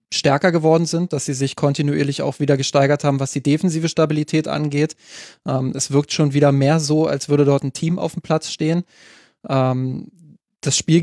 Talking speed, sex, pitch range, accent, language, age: 180 wpm, male, 135-155 Hz, German, German, 20-39